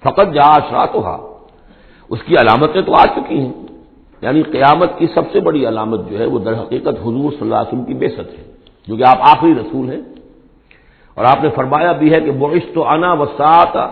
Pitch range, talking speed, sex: 120-165 Hz, 195 wpm, male